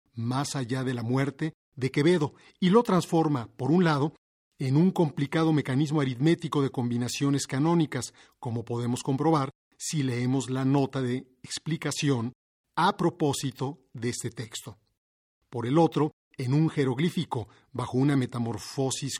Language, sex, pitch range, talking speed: Spanish, male, 125-150 Hz, 140 wpm